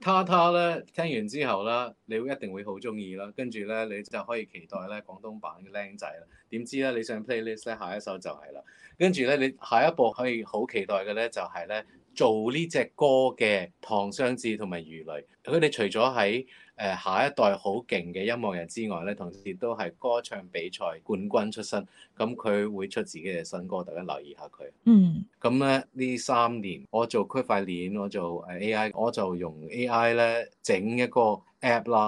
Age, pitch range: 30-49, 100-125 Hz